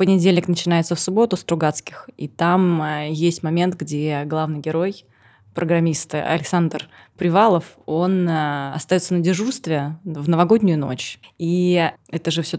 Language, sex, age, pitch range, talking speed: Russian, female, 20-39, 155-185 Hz, 130 wpm